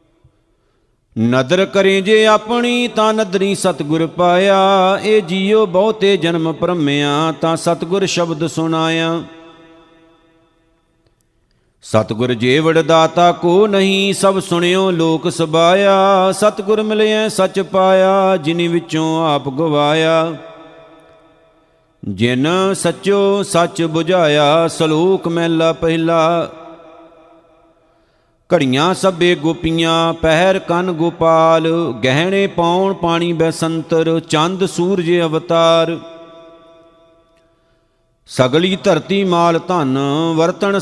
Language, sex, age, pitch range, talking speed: Punjabi, male, 50-69, 160-180 Hz, 80 wpm